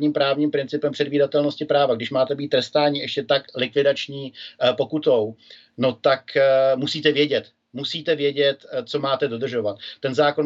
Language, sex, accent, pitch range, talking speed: Czech, male, native, 135-145 Hz, 130 wpm